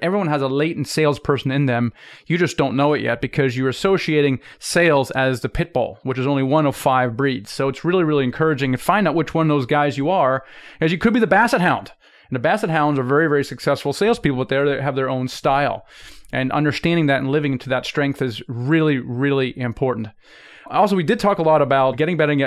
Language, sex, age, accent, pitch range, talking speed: English, male, 30-49, American, 130-155 Hz, 230 wpm